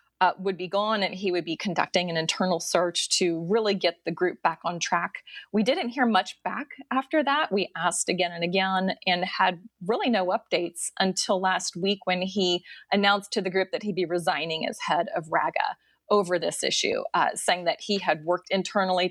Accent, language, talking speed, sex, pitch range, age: American, English, 200 wpm, female, 175-210 Hz, 30-49